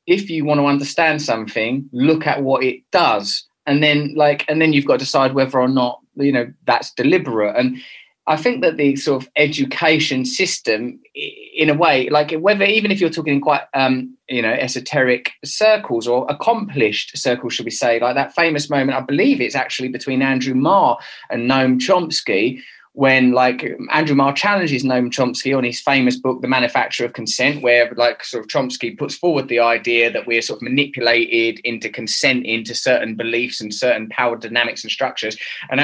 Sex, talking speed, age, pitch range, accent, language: male, 190 wpm, 20-39, 125-150 Hz, British, English